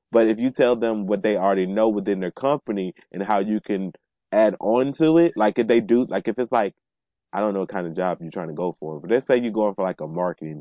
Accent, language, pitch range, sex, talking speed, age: American, English, 95-125 Hz, male, 275 wpm, 20-39